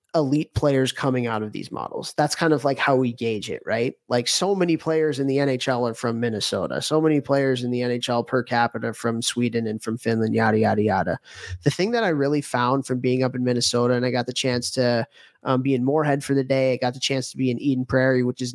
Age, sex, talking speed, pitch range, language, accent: 30-49, male, 250 wpm, 120-150 Hz, English, American